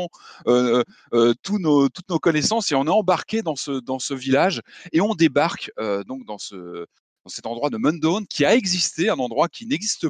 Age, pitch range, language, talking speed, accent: 30-49, 125-200 Hz, French, 215 wpm, French